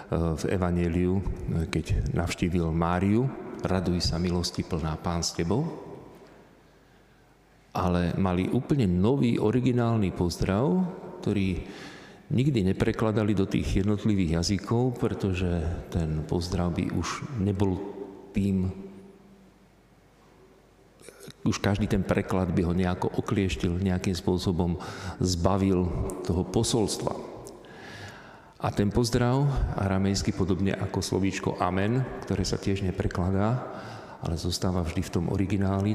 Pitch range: 90-100 Hz